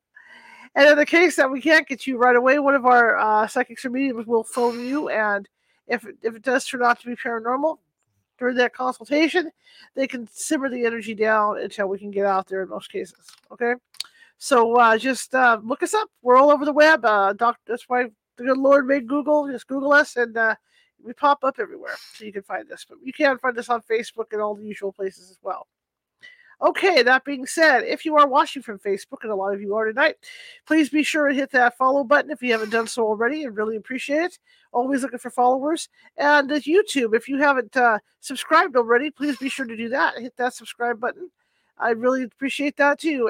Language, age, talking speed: English, 40-59, 220 wpm